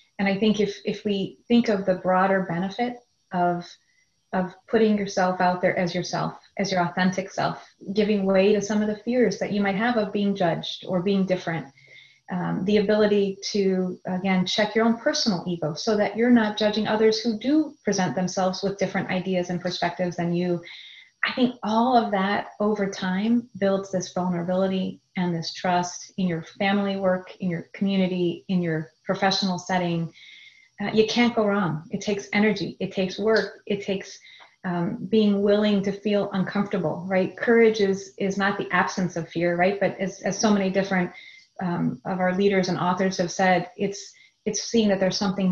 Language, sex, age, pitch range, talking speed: English, female, 30-49, 180-205 Hz, 185 wpm